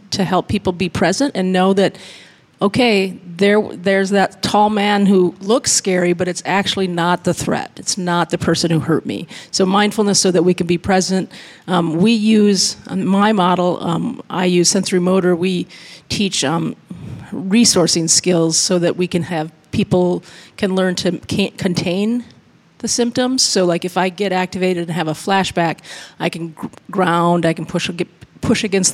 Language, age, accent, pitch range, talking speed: English, 40-59, American, 170-195 Hz, 175 wpm